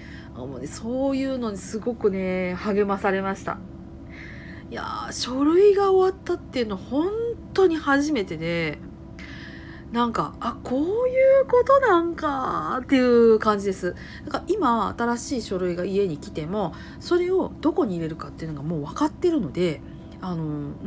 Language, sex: Japanese, female